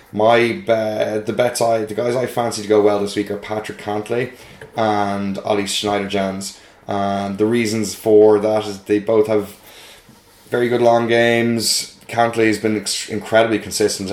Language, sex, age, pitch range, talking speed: English, male, 10-29, 95-110 Hz, 160 wpm